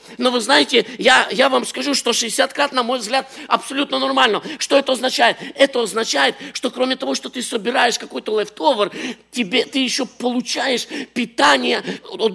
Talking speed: 155 wpm